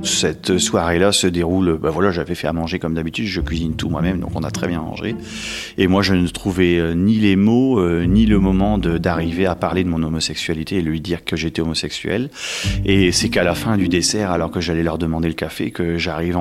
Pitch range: 85-100 Hz